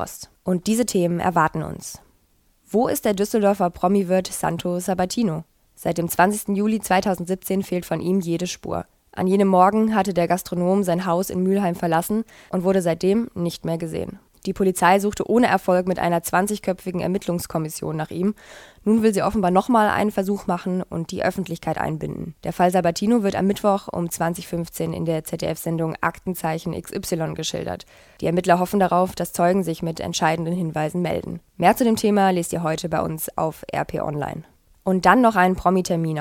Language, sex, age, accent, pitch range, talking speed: German, female, 20-39, German, 165-195 Hz, 170 wpm